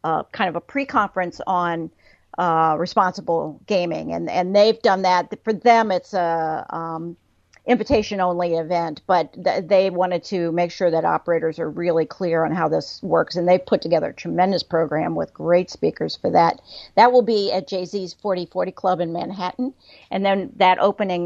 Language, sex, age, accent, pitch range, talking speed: English, female, 50-69, American, 170-195 Hz, 200 wpm